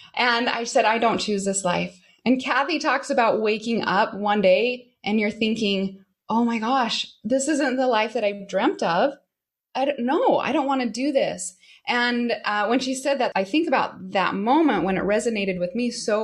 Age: 20-39